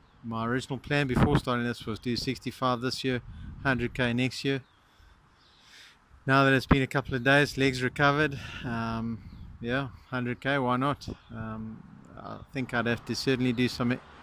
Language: English